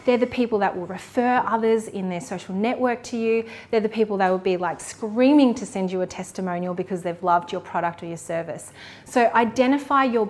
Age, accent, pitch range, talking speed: 30-49, Australian, 185-235 Hz, 215 wpm